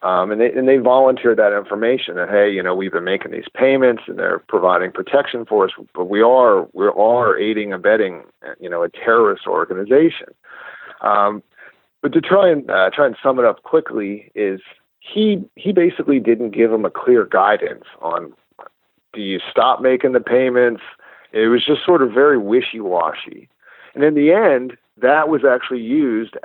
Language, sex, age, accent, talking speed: English, male, 40-59, American, 185 wpm